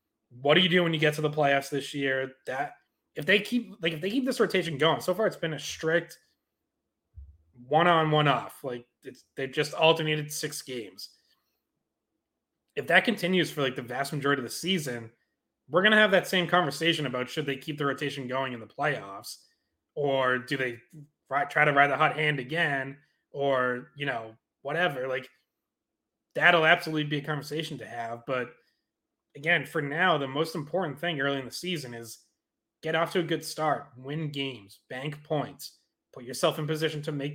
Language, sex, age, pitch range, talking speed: English, male, 20-39, 130-160 Hz, 190 wpm